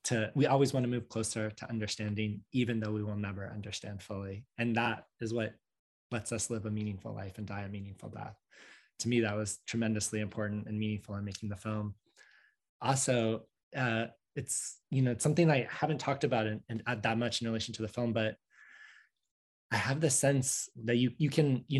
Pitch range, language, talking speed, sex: 110-130 Hz, English, 200 wpm, male